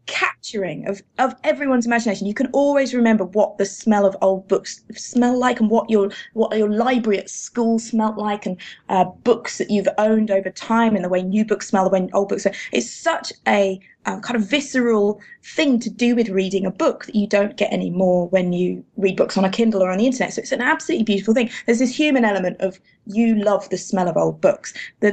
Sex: female